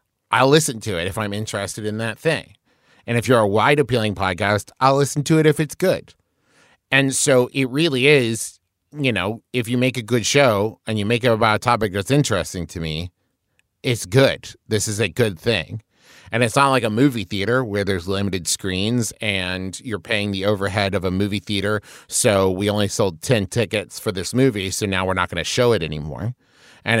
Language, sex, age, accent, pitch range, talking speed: English, male, 30-49, American, 100-130 Hz, 205 wpm